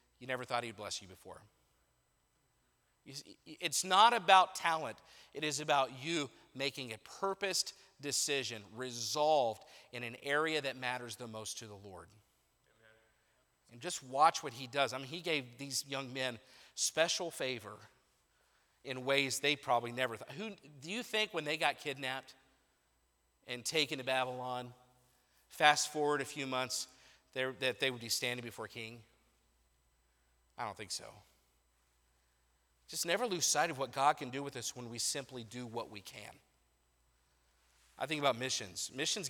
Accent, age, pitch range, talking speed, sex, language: American, 40-59, 110-150 Hz, 155 wpm, male, English